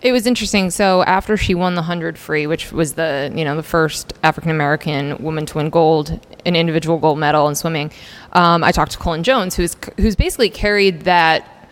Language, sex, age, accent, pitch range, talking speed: English, female, 20-39, American, 160-185 Hz, 205 wpm